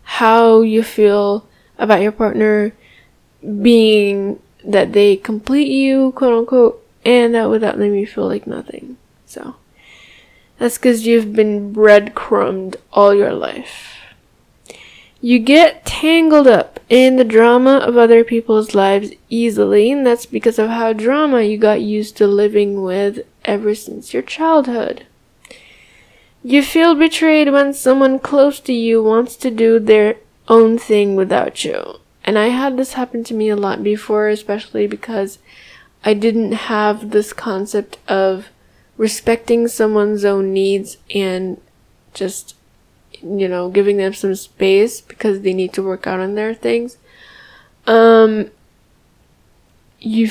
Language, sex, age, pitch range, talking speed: English, female, 10-29, 205-240 Hz, 135 wpm